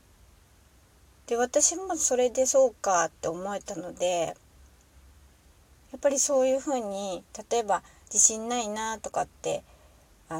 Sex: female